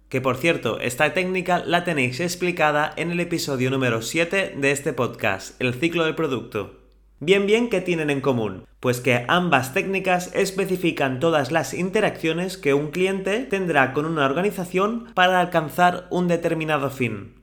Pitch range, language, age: 140-185 Hz, Spanish, 30-49